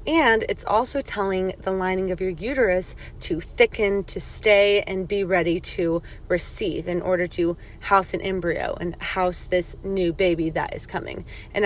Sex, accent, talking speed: female, American, 170 wpm